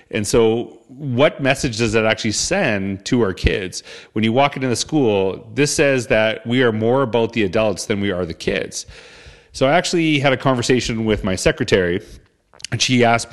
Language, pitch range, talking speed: English, 95-115 Hz, 195 wpm